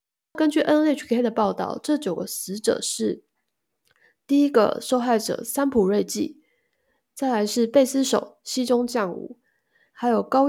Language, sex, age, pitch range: Chinese, female, 20-39, 200-255 Hz